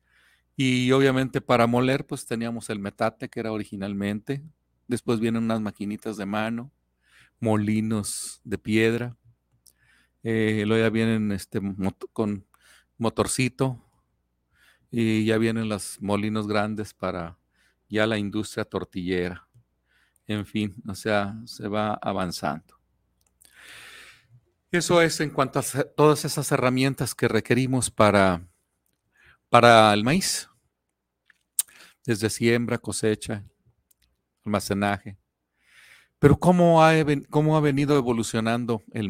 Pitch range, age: 100-125 Hz, 40-59